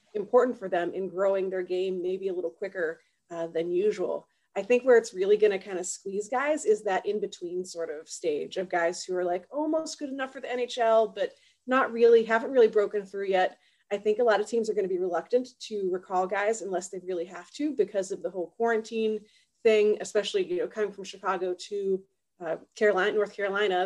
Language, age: English, 30-49